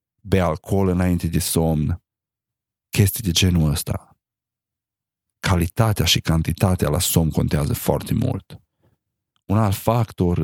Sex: male